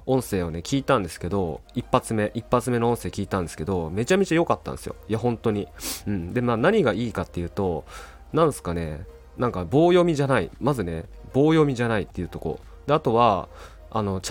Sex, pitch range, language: male, 85-140 Hz, Japanese